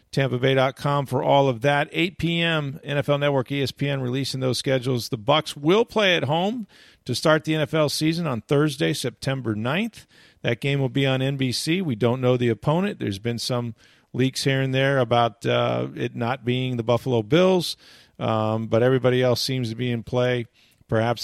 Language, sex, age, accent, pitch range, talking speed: English, male, 40-59, American, 120-155 Hz, 180 wpm